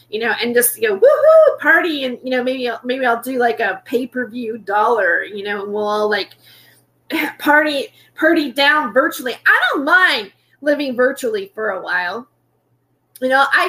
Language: English